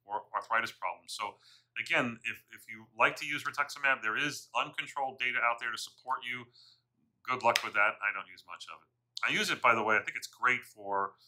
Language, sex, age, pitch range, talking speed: English, male, 40-59, 110-125 Hz, 225 wpm